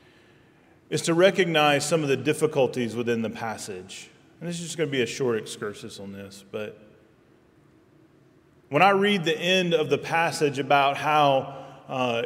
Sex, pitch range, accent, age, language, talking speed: male, 130-165 Hz, American, 30-49, English, 160 wpm